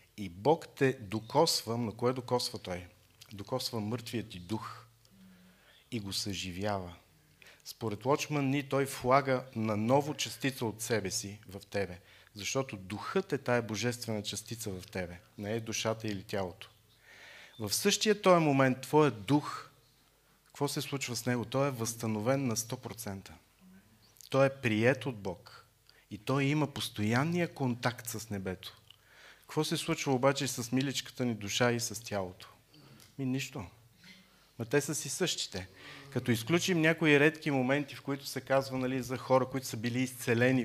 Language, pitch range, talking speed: Bulgarian, 105-140 Hz, 150 wpm